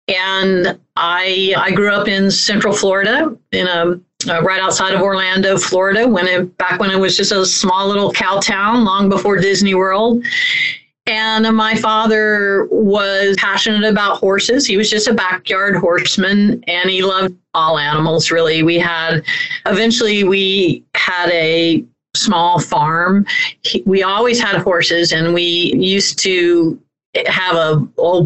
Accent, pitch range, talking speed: American, 165-205 Hz, 150 wpm